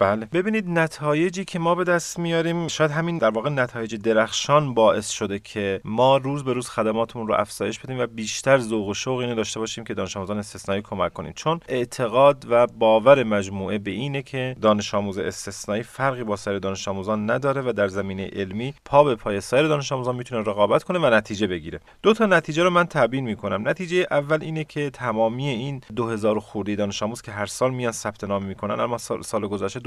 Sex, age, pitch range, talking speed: male, 30-49, 105-145 Hz, 195 wpm